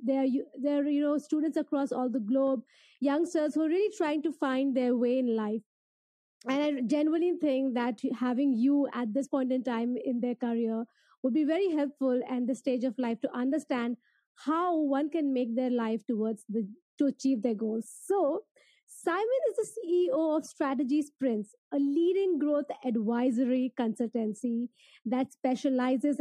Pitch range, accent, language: 245-305 Hz, Indian, English